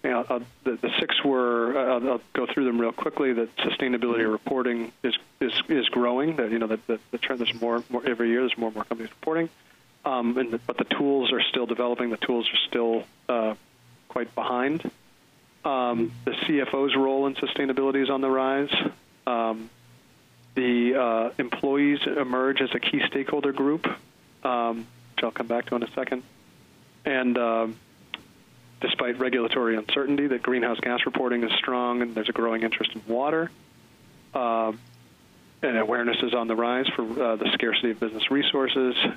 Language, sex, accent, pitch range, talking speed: English, male, American, 115-130 Hz, 175 wpm